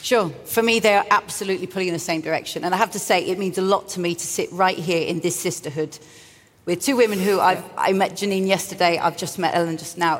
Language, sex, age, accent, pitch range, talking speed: English, female, 40-59, British, 175-220 Hz, 260 wpm